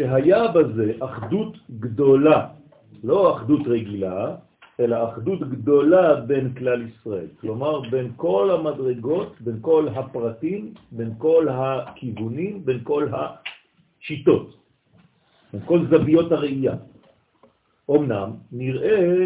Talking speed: 95 wpm